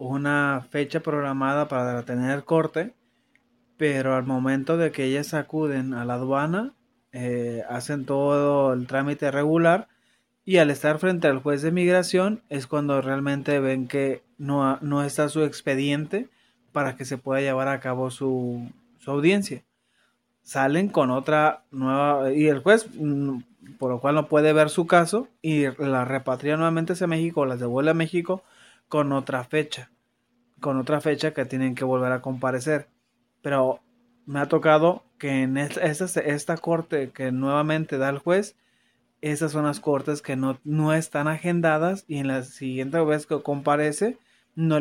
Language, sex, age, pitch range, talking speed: English, male, 30-49, 135-160 Hz, 160 wpm